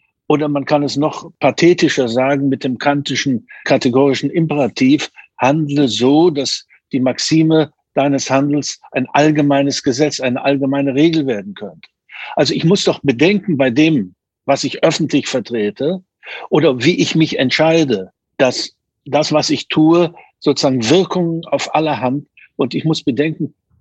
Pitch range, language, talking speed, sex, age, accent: 125-150 Hz, German, 145 wpm, male, 60-79, German